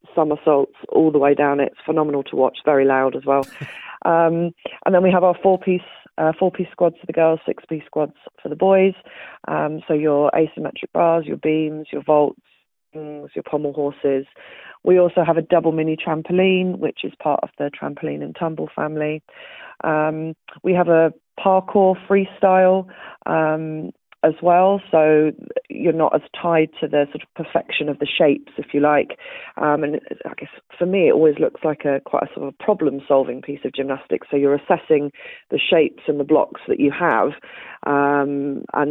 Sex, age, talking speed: female, 40-59, 185 wpm